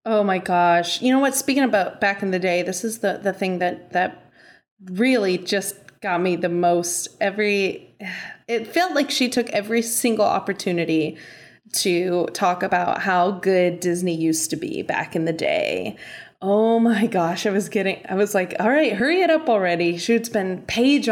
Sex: female